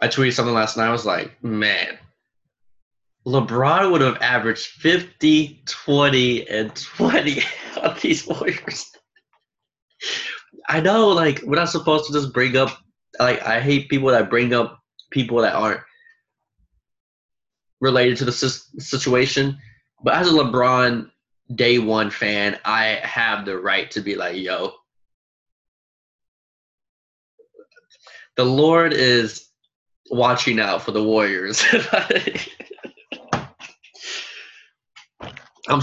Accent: American